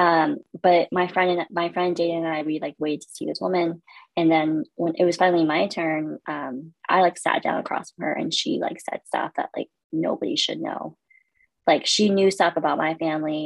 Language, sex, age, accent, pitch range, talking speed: English, female, 20-39, American, 165-205 Hz, 225 wpm